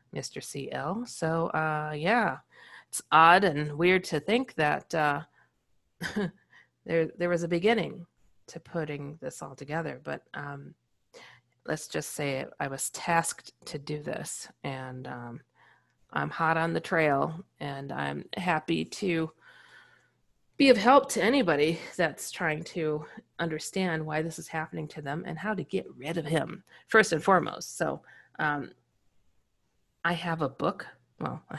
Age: 30-49